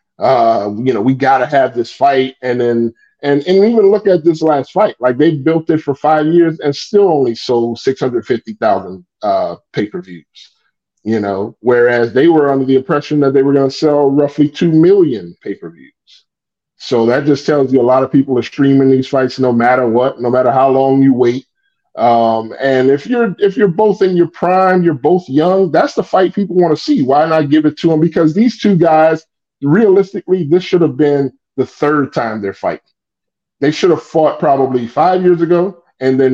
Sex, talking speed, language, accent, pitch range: male, 200 wpm, English, American, 130-170 Hz